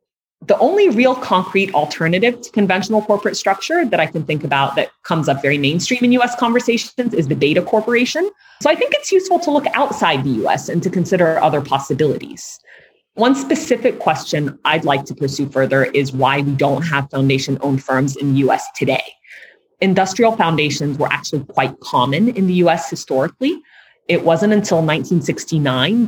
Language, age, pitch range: English, 30-49, 140-230 Hz